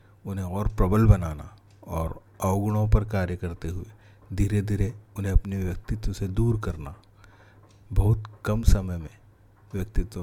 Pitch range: 90-105 Hz